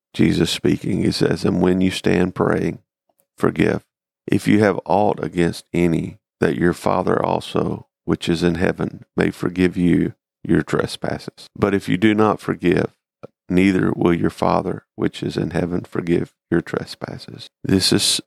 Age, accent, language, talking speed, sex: 50-69, American, English, 160 wpm, male